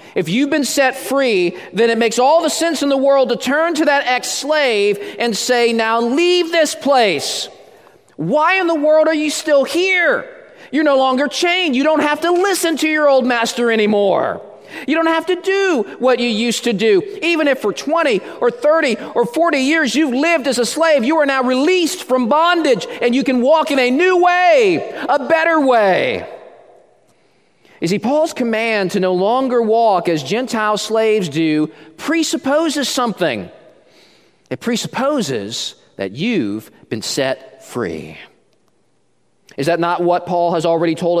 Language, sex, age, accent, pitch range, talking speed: English, male, 40-59, American, 195-310 Hz, 170 wpm